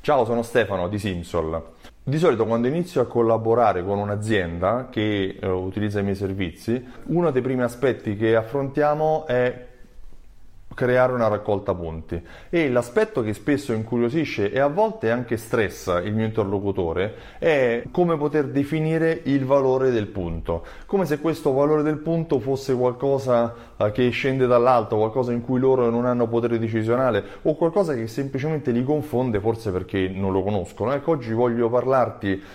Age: 30-49